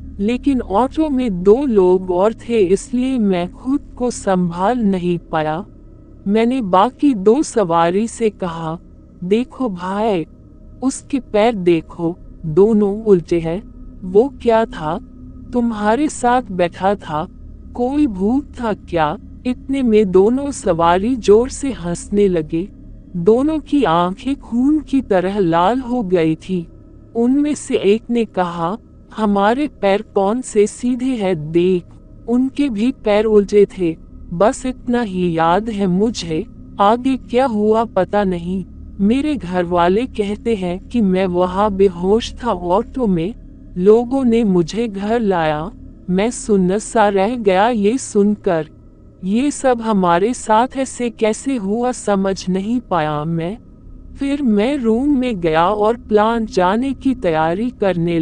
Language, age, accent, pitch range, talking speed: Hindi, 50-69, native, 180-240 Hz, 135 wpm